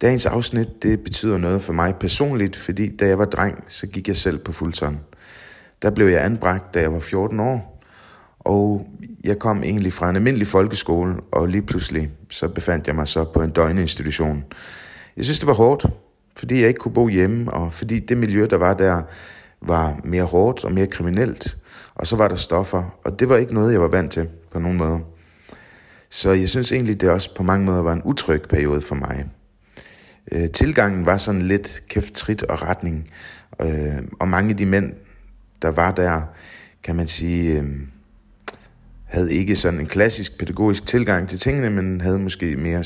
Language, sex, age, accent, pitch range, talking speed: Danish, male, 30-49, native, 80-105 Hz, 185 wpm